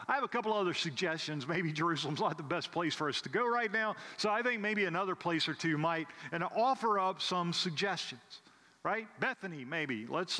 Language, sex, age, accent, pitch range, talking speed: English, male, 40-59, American, 155-205 Hz, 210 wpm